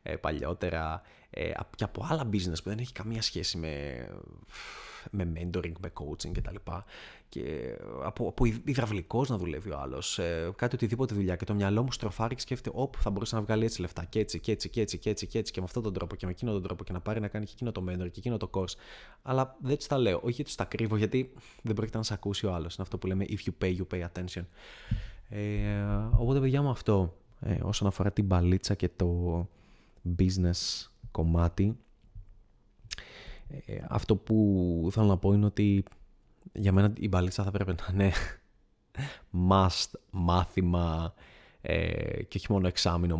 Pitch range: 90-110 Hz